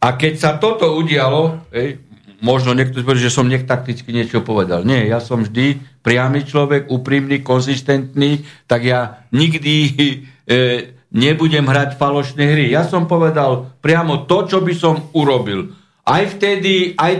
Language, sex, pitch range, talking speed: Slovak, male, 130-170 Hz, 150 wpm